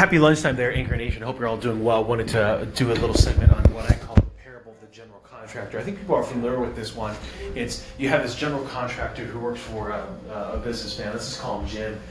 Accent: American